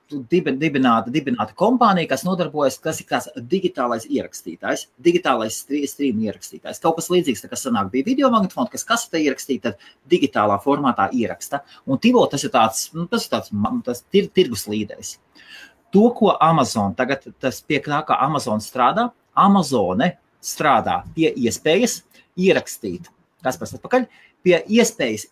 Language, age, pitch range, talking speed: English, 30-49, 135-200 Hz, 135 wpm